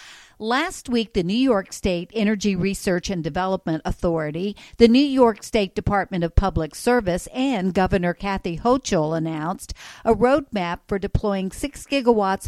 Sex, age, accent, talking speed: female, 50-69, American, 145 wpm